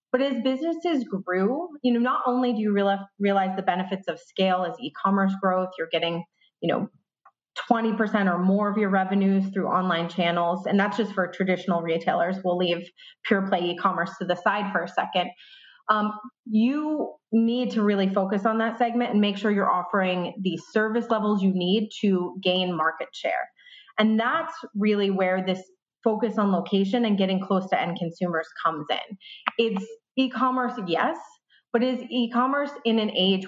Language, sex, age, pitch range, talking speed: English, female, 30-49, 185-245 Hz, 175 wpm